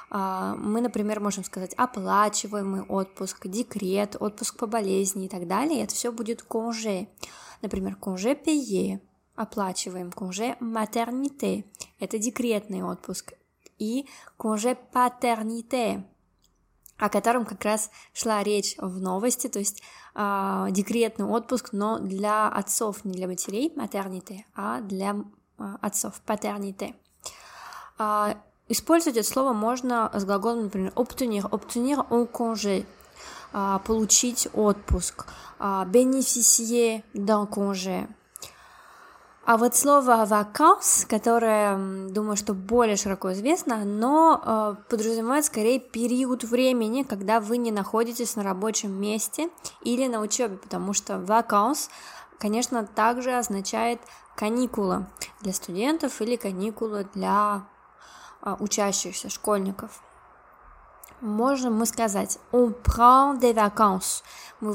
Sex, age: female, 20-39